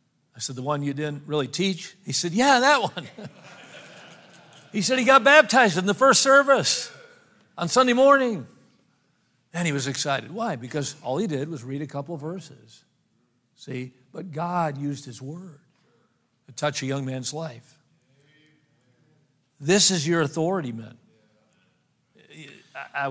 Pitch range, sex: 130-165 Hz, male